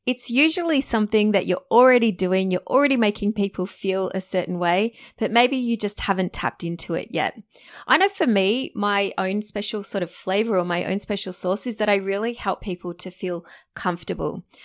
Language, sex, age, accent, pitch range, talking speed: English, female, 20-39, Australian, 175-210 Hz, 195 wpm